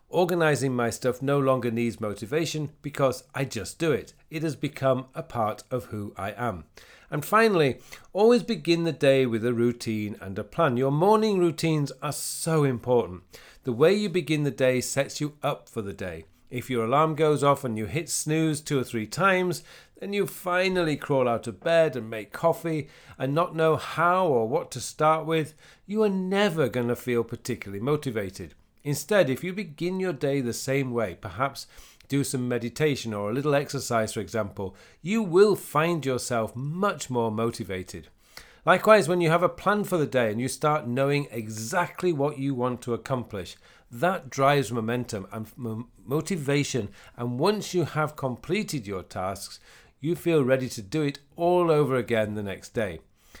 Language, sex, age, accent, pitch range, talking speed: English, male, 40-59, British, 115-160 Hz, 180 wpm